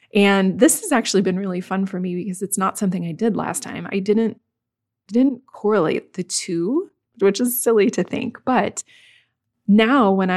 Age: 20-39